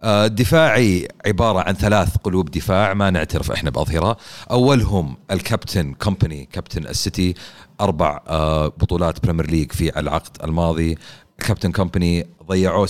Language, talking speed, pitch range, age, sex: Arabic, 120 wpm, 85-100 Hz, 40-59, male